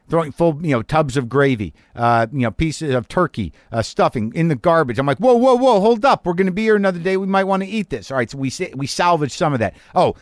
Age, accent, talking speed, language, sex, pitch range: 50-69, American, 280 wpm, English, male, 120-165 Hz